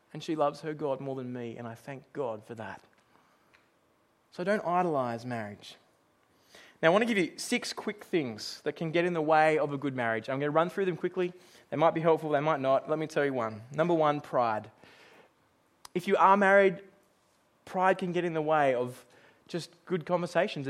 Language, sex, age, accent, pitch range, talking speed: English, male, 20-39, Australian, 155-215 Hz, 210 wpm